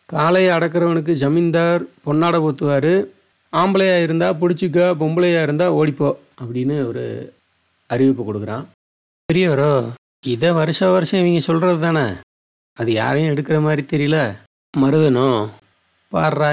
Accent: native